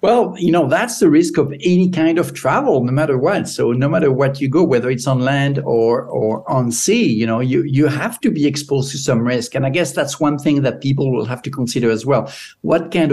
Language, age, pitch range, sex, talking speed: English, 60-79, 120-150 Hz, male, 250 wpm